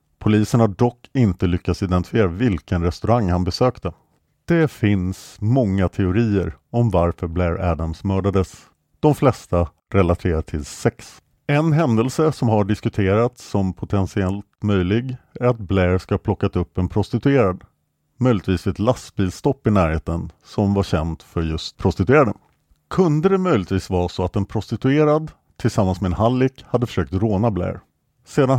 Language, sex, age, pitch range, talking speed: English, male, 50-69, 90-120 Hz, 145 wpm